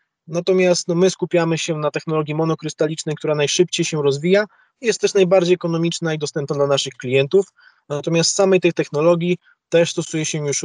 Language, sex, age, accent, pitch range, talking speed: Polish, male, 20-39, native, 150-175 Hz, 165 wpm